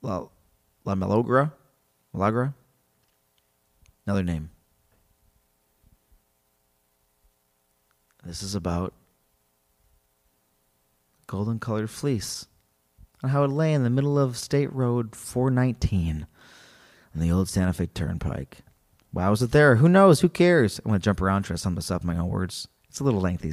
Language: English